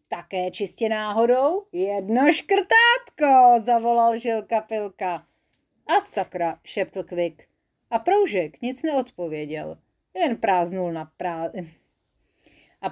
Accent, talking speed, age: native, 100 wpm, 40-59